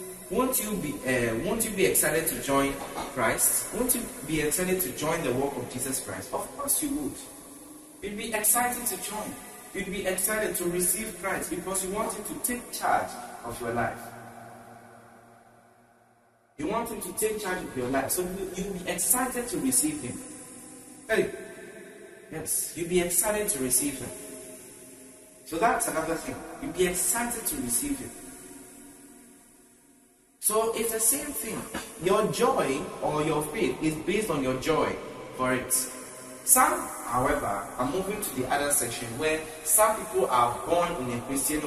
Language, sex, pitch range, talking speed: English, male, 130-220 Hz, 160 wpm